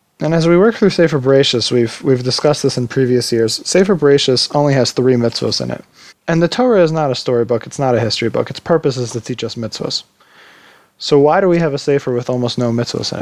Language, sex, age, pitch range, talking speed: English, male, 20-39, 125-165 Hz, 240 wpm